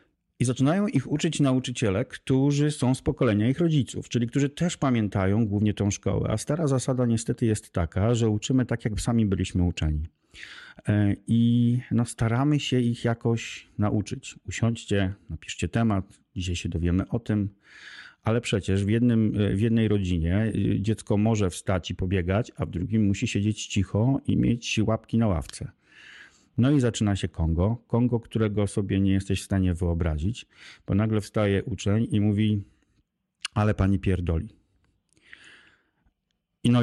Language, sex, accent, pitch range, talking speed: Polish, male, native, 100-120 Hz, 150 wpm